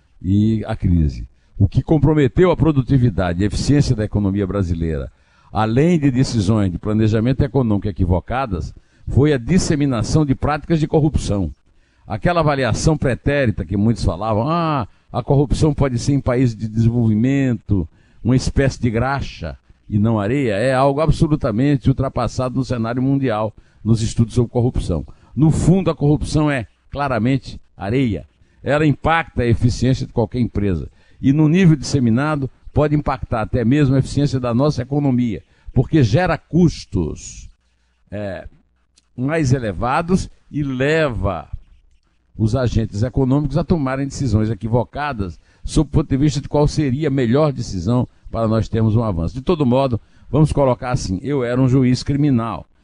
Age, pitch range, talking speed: 60-79, 105-140 Hz, 145 wpm